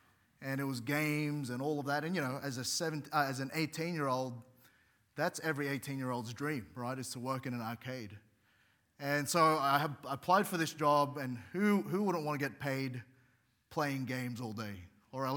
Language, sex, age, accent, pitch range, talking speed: English, male, 30-49, Australian, 130-155 Hz, 195 wpm